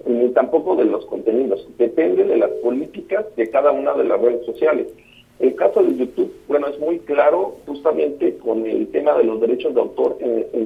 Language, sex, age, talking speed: Spanish, male, 50-69, 195 wpm